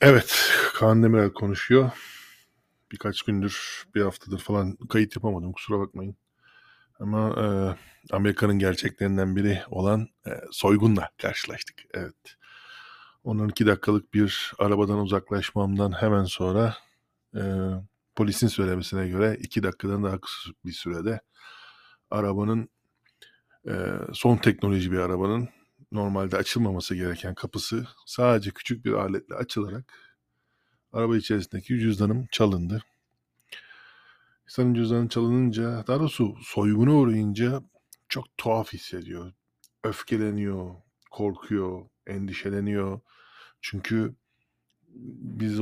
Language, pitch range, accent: Turkish, 95-110 Hz, native